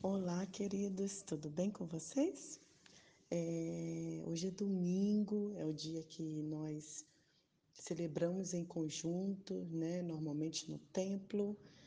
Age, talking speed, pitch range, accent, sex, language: 20-39, 110 wpm, 160-195 Hz, Brazilian, female, Portuguese